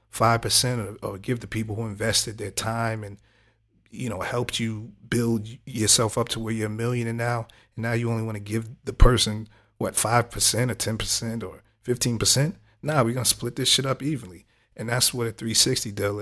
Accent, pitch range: American, 110-125 Hz